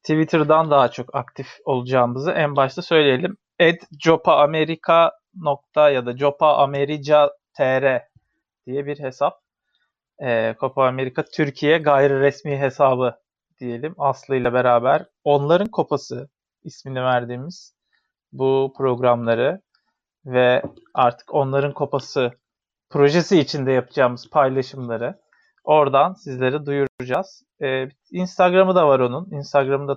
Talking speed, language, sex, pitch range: 100 wpm, Turkish, male, 125-150 Hz